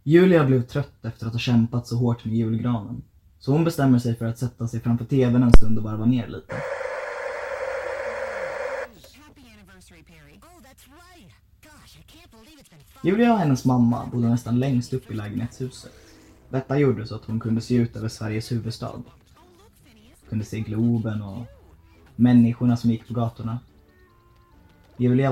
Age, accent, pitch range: 20-39, native, 110-130 Hz